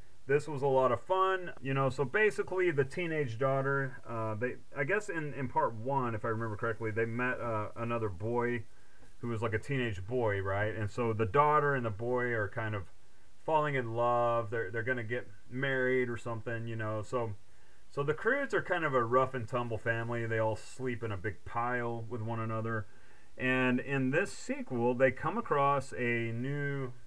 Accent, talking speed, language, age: American, 195 wpm, English, 30-49